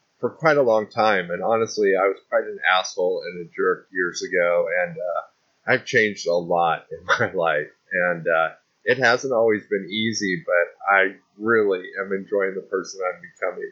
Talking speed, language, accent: 190 wpm, English, American